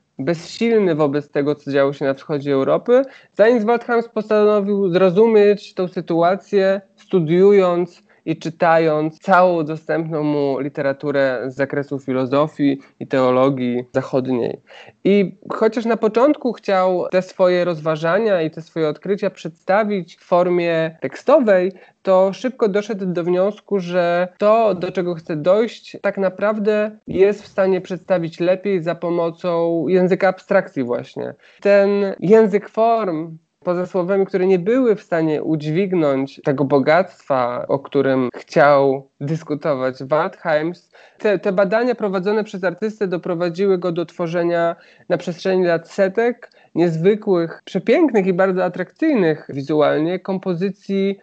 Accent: native